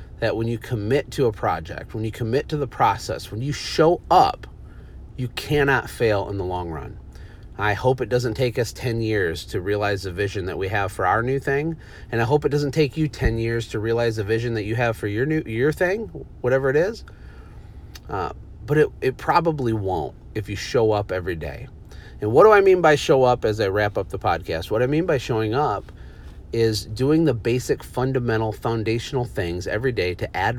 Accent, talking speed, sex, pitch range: American, 215 wpm, male, 105-140 Hz